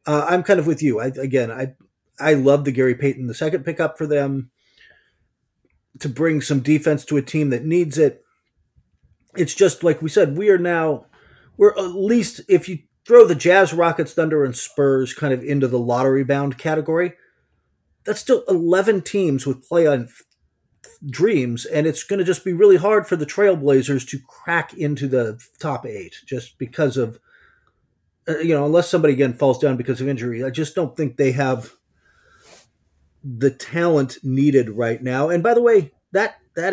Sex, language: male, English